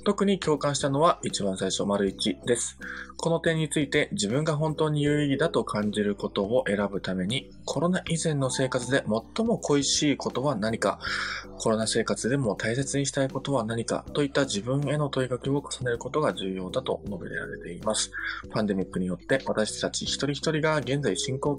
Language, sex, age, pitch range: Japanese, male, 20-39, 105-145 Hz